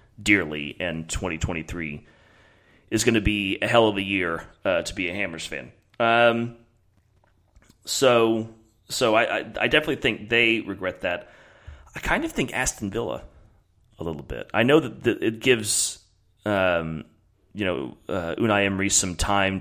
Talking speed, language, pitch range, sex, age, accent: 160 wpm, English, 85-105 Hz, male, 30-49, American